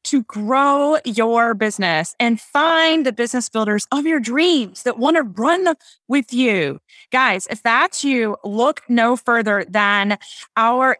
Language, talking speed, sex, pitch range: English, 145 wpm, female, 225-300 Hz